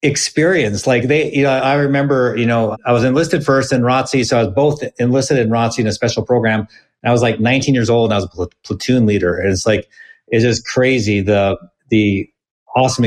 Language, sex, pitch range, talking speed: English, male, 110-140 Hz, 225 wpm